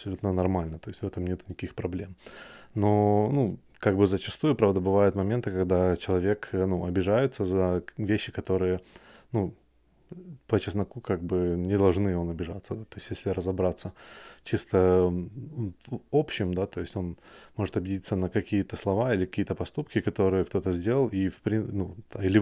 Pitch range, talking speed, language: 90-105 Hz, 160 wpm, Russian